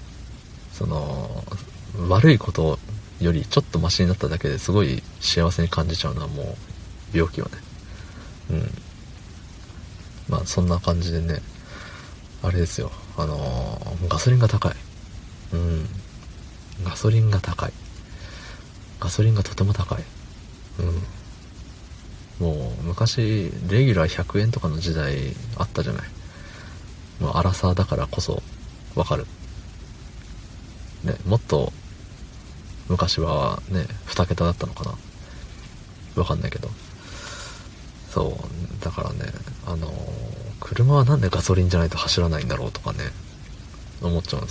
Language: Japanese